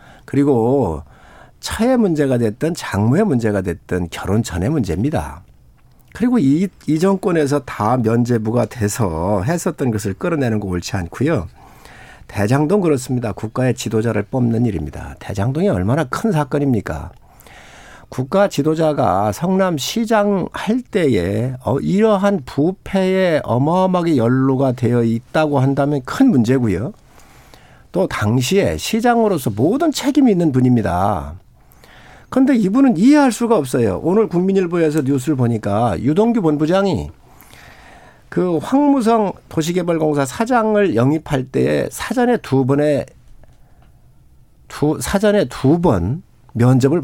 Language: Korean